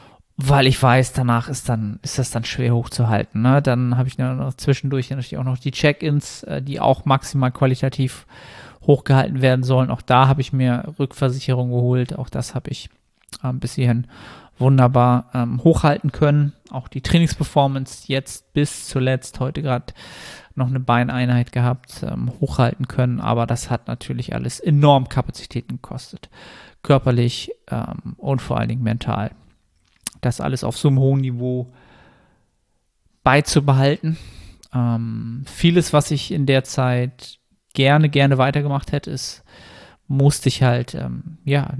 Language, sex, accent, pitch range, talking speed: German, male, German, 125-140 Hz, 135 wpm